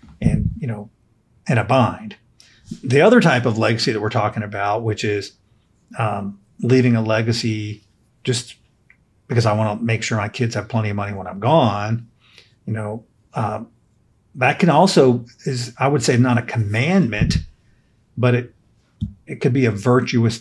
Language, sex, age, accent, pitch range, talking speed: English, male, 40-59, American, 110-130 Hz, 170 wpm